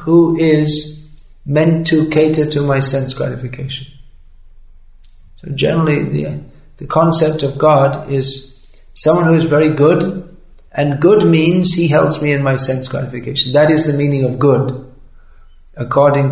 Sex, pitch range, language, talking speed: male, 130-155 Hz, English, 145 wpm